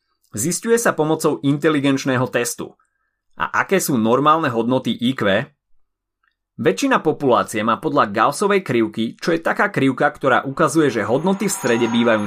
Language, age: Slovak, 30-49